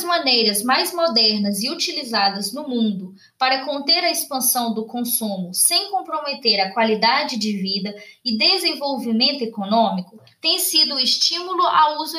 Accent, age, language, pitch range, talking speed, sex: Brazilian, 10-29, Portuguese, 220-315 Hz, 140 wpm, female